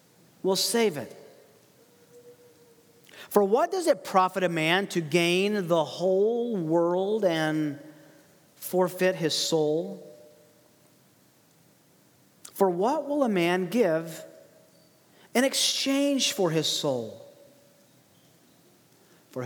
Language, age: English, 40-59